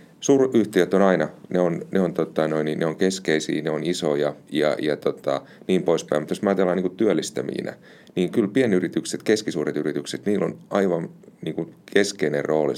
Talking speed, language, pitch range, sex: 170 wpm, Finnish, 75-95 Hz, male